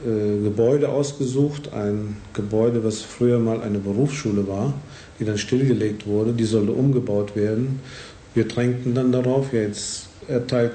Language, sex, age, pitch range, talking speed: Urdu, male, 50-69, 105-120 Hz, 140 wpm